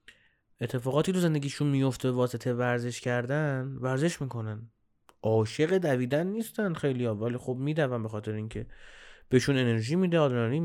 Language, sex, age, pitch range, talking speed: Persian, male, 30-49, 120-160 Hz, 130 wpm